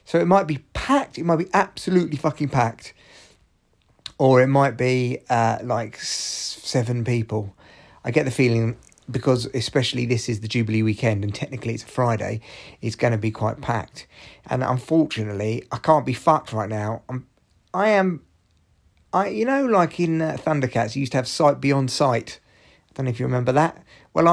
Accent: British